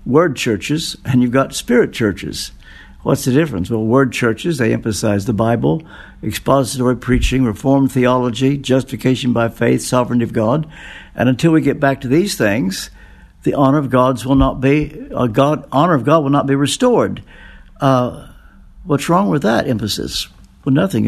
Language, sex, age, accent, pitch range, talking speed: English, male, 60-79, American, 115-140 Hz, 170 wpm